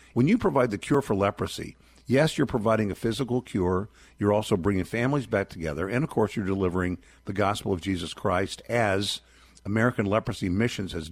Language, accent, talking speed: English, American, 185 wpm